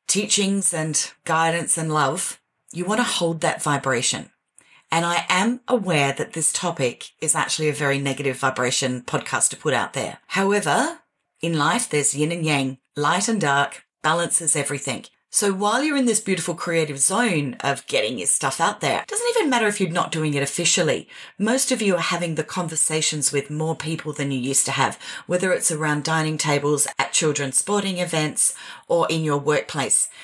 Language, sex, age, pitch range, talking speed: English, female, 40-59, 150-205 Hz, 185 wpm